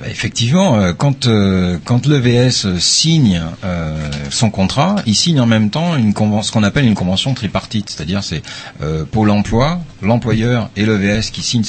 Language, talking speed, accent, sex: French, 185 wpm, French, male